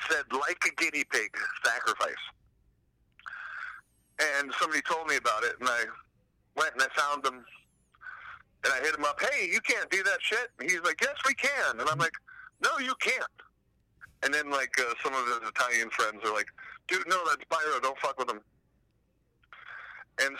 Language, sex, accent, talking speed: English, male, American, 180 wpm